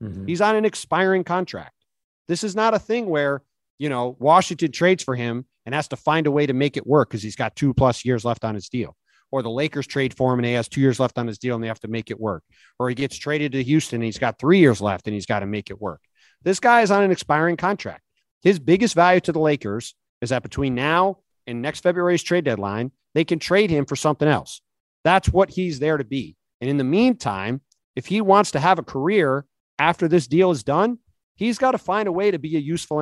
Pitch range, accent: 130-175 Hz, American